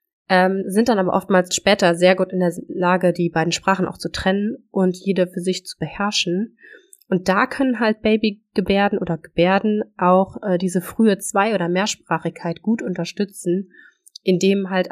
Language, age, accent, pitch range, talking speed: German, 30-49, German, 180-220 Hz, 165 wpm